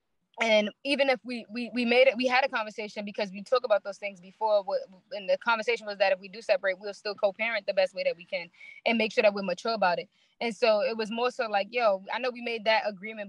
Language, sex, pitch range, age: English, female, 205-255 Hz, 20-39